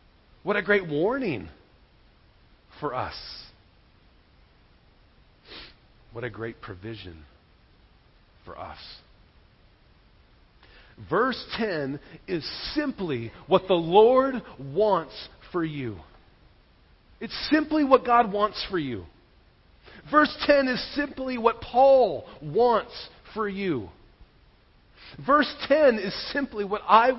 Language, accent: English, American